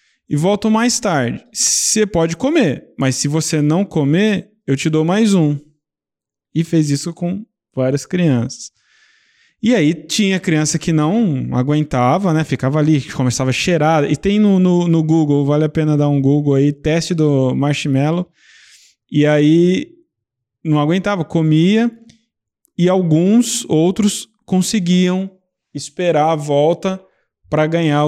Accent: Brazilian